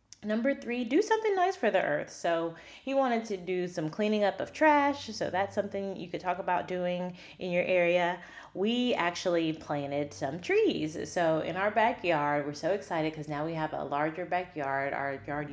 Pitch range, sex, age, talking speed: 155-215 Hz, female, 30-49, 195 wpm